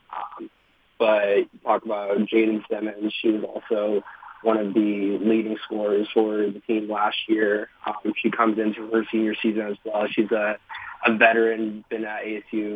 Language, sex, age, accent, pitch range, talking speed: English, male, 20-39, American, 105-115 Hz, 165 wpm